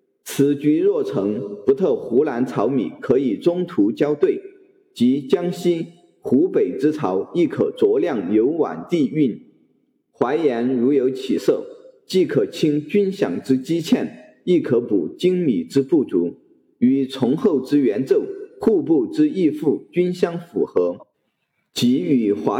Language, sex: Chinese, male